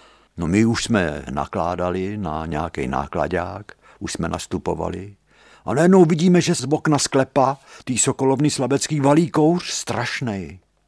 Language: Czech